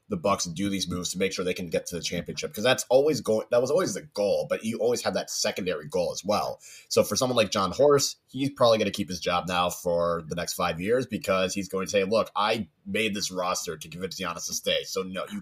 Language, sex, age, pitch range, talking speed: English, male, 30-49, 90-120 Hz, 270 wpm